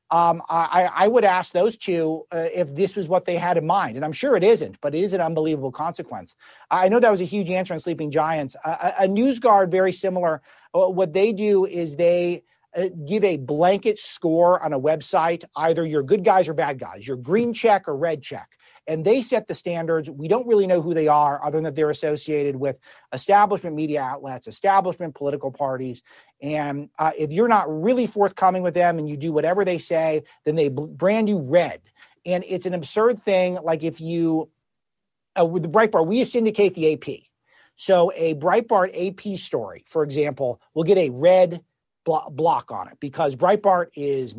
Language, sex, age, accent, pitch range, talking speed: English, male, 40-59, American, 155-190 Hz, 195 wpm